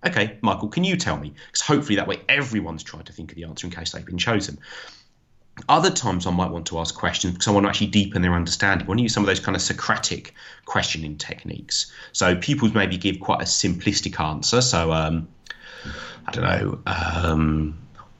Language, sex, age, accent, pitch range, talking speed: English, male, 30-49, British, 85-115 Hz, 210 wpm